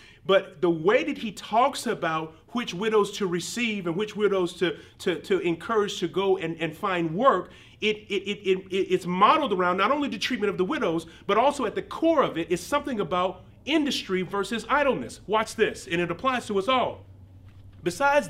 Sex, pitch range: male, 180-245 Hz